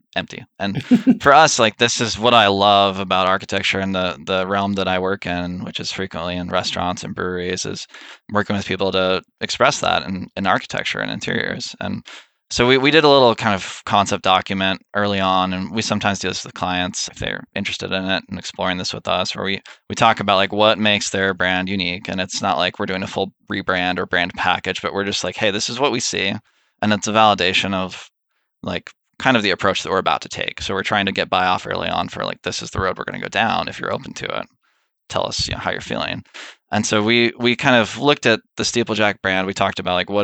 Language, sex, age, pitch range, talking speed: English, male, 20-39, 95-110 Hz, 245 wpm